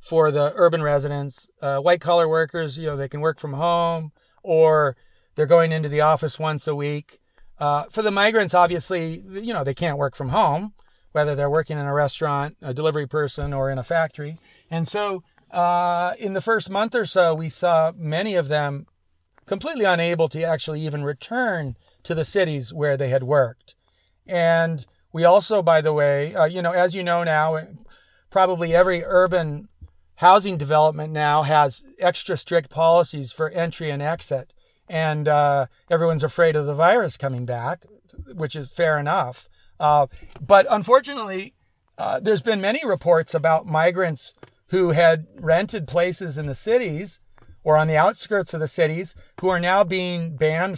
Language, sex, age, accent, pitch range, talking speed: English, male, 40-59, American, 145-175 Hz, 170 wpm